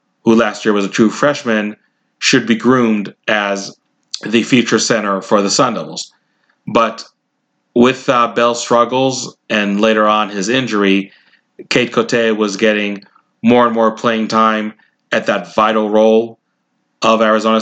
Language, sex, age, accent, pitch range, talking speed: English, male, 30-49, American, 105-120 Hz, 145 wpm